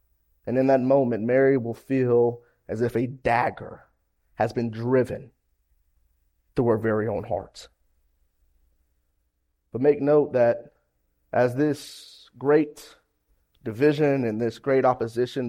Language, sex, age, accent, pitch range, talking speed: English, male, 30-49, American, 110-160 Hz, 120 wpm